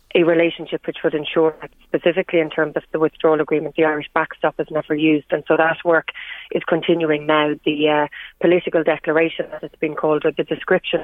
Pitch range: 155-170 Hz